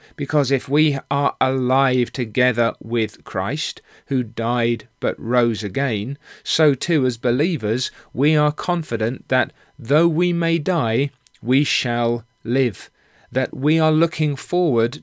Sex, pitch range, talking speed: male, 120-150 Hz, 130 wpm